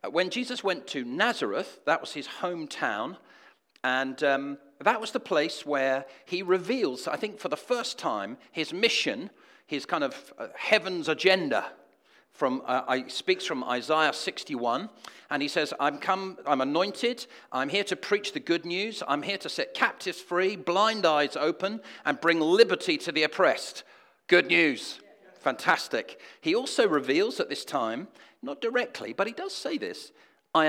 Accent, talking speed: British, 165 wpm